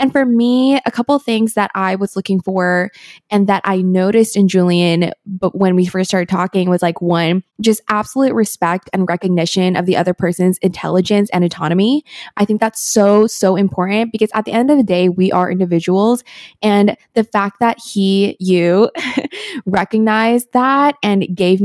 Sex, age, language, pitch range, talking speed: female, 20-39, English, 185-220 Hz, 180 wpm